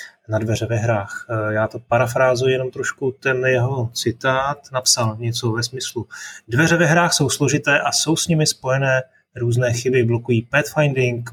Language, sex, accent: Czech, male, native